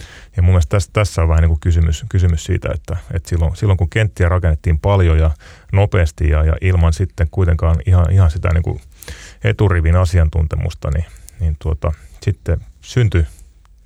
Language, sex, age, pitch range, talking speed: Finnish, male, 30-49, 80-95 Hz, 160 wpm